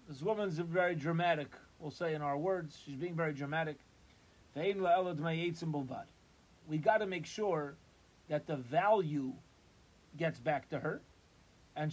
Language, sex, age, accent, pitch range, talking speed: English, male, 30-49, American, 145-180 Hz, 130 wpm